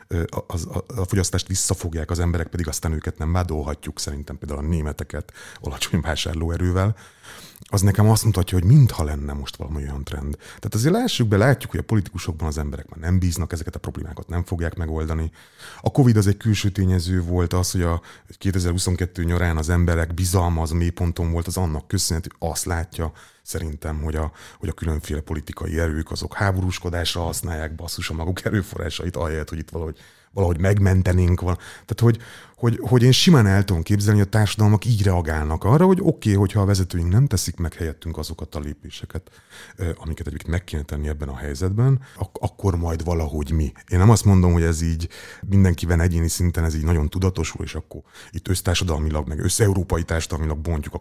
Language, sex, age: Hungarian, male, 30-49